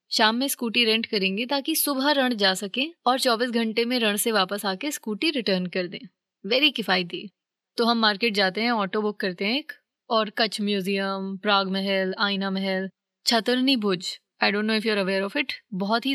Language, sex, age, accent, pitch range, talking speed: Hindi, female, 20-39, native, 200-255 Hz, 180 wpm